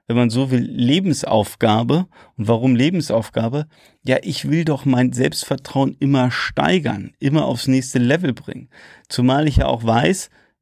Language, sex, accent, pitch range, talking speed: German, male, German, 120-145 Hz, 145 wpm